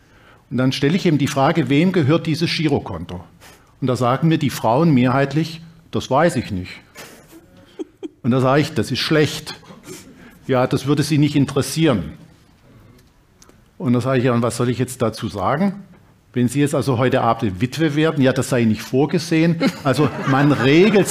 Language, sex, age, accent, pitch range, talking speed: German, male, 50-69, German, 125-160 Hz, 175 wpm